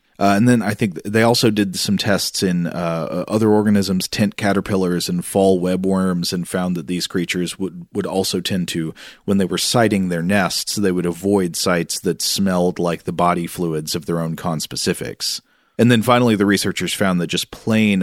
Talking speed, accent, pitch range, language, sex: 195 wpm, American, 90-105 Hz, English, male